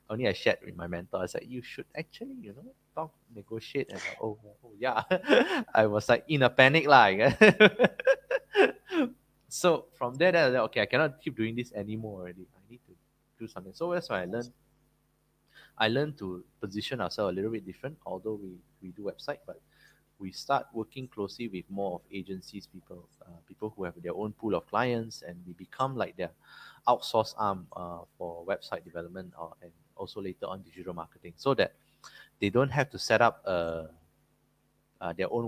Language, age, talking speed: English, 20-39, 195 wpm